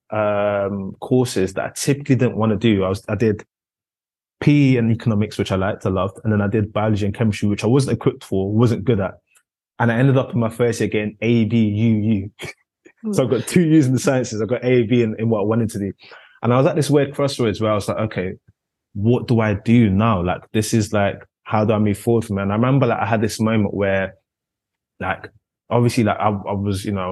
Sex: male